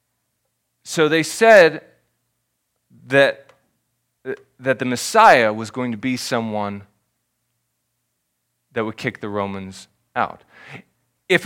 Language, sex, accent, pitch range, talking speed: English, male, American, 120-190 Hz, 100 wpm